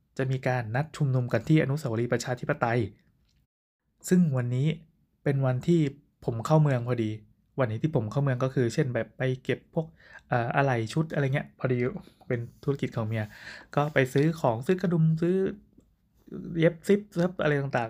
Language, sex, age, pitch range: Thai, male, 20-39, 120-150 Hz